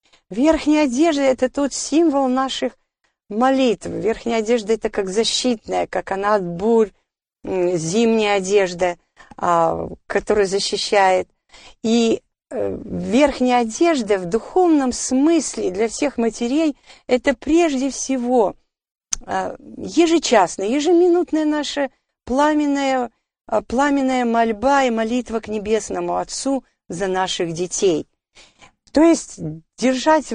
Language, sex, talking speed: Russian, female, 105 wpm